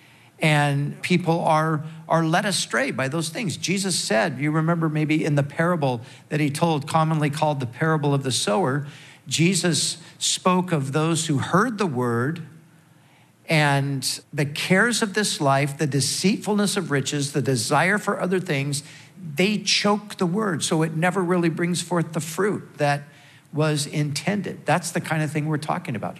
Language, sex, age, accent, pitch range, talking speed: English, male, 50-69, American, 135-165 Hz, 165 wpm